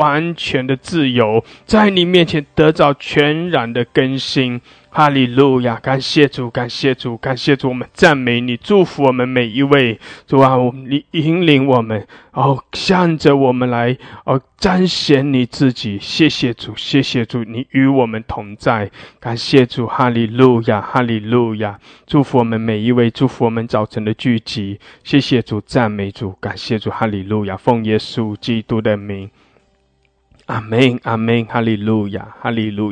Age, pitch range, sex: 20-39, 110-135 Hz, male